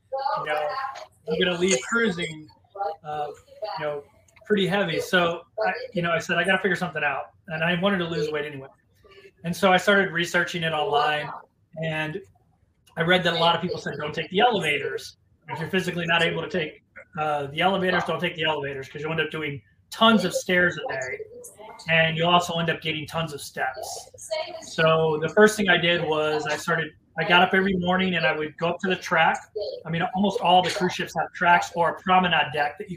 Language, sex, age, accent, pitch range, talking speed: English, male, 30-49, American, 160-185 Hz, 215 wpm